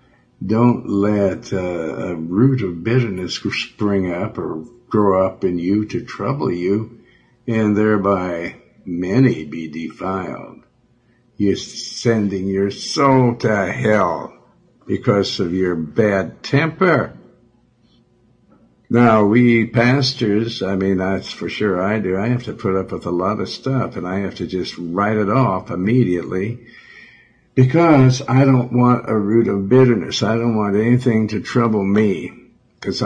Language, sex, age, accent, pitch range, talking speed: English, male, 60-79, American, 95-120 Hz, 140 wpm